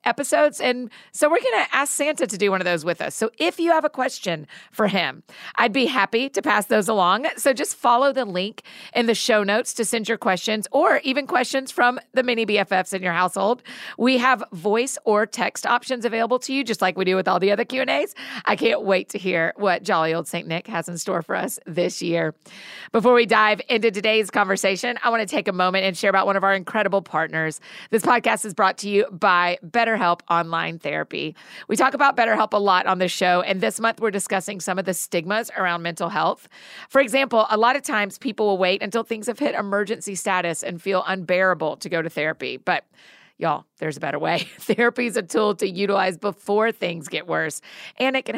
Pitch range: 185-235 Hz